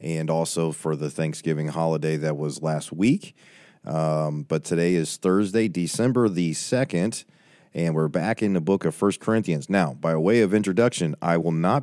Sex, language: male, English